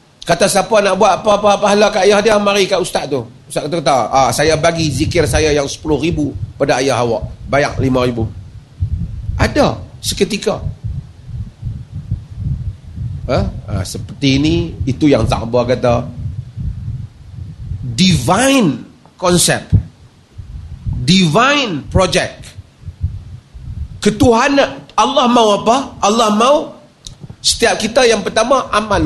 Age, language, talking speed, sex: 40-59, Malay, 110 wpm, male